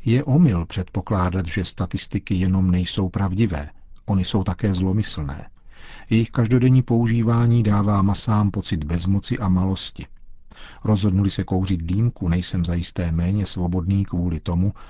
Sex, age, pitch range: male, 50-69, 90-110 Hz